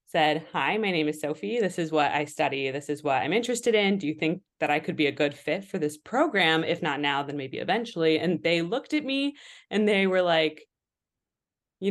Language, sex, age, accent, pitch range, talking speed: English, female, 20-39, American, 150-200 Hz, 230 wpm